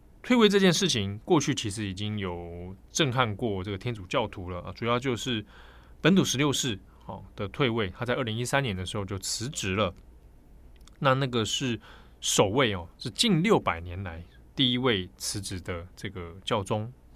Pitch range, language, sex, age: 95-130 Hz, Chinese, male, 20-39